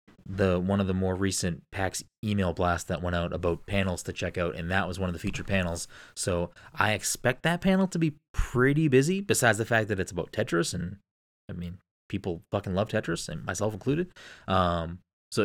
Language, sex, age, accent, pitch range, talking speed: English, male, 20-39, American, 90-115 Hz, 205 wpm